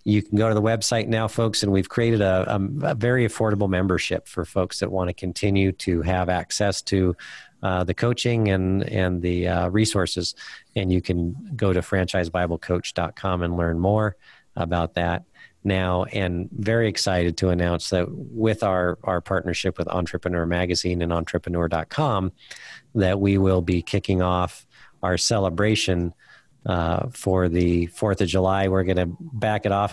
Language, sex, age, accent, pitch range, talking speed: English, male, 40-59, American, 90-105 Hz, 165 wpm